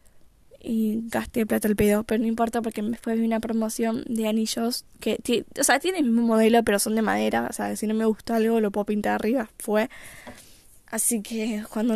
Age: 10-29